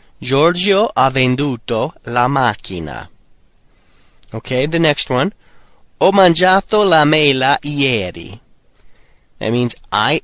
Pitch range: 115-155 Hz